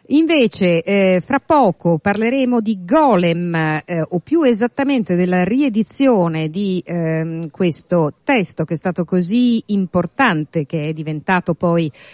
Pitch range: 160-205 Hz